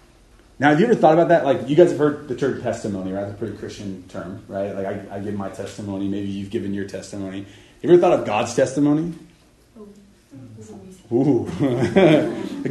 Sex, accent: male, American